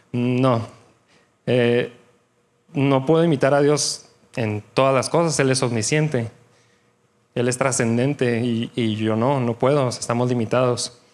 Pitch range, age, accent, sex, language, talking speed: 120-150 Hz, 20-39, Mexican, male, Spanish, 135 wpm